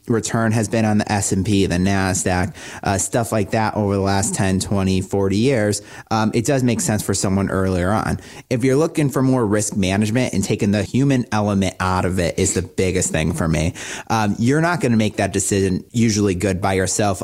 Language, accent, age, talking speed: English, American, 30-49, 210 wpm